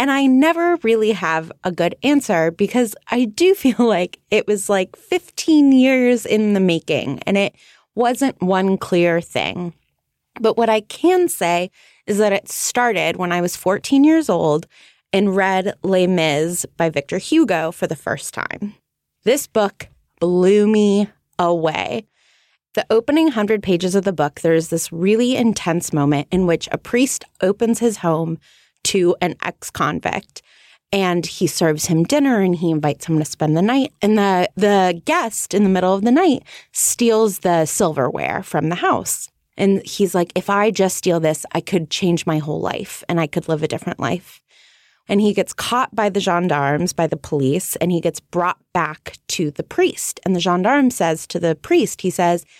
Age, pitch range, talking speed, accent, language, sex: 20-39, 170-225 Hz, 180 wpm, American, English, female